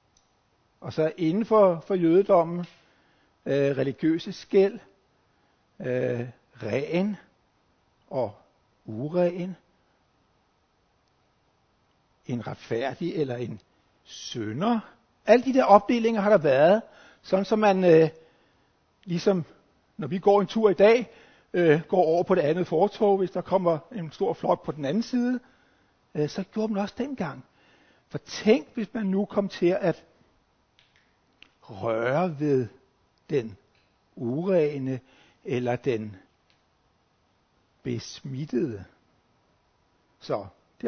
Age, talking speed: 60-79, 115 wpm